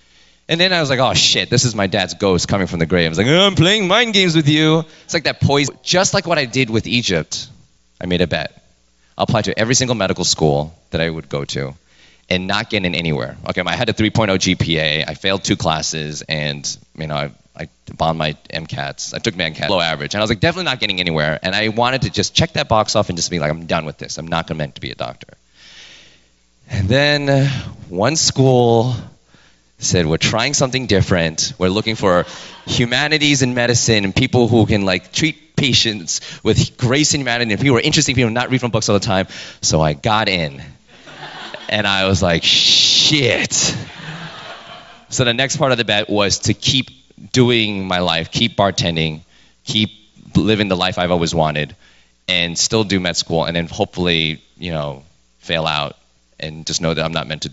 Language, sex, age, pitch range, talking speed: English, male, 20-39, 80-125 Hz, 210 wpm